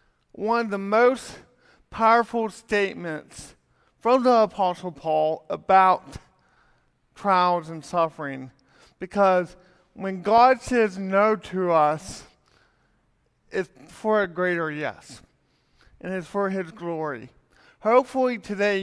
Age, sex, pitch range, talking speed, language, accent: 40-59, male, 175-215 Hz, 105 wpm, English, American